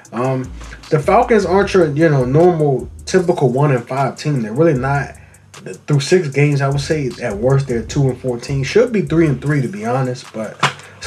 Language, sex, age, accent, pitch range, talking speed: English, male, 20-39, American, 125-165 Hz, 205 wpm